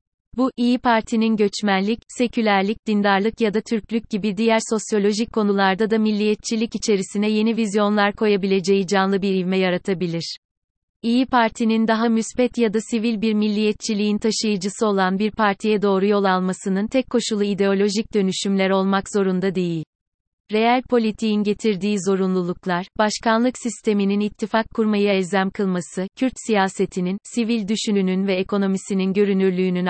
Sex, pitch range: female, 190-220 Hz